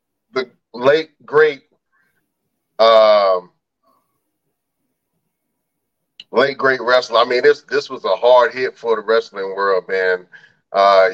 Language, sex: English, male